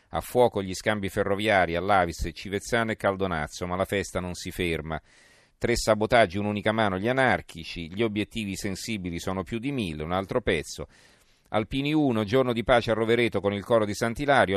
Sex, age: male, 40-59